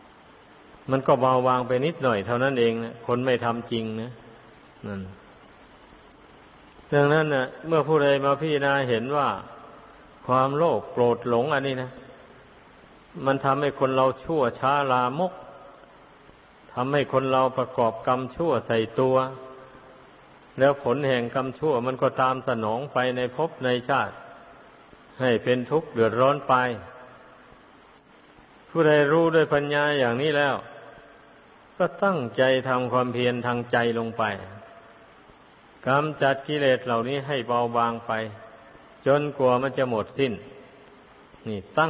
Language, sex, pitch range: Thai, male, 120-140 Hz